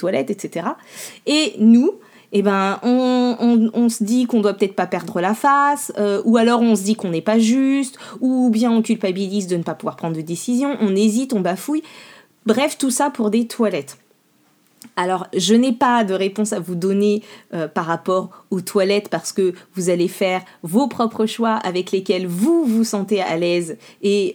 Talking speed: 195 wpm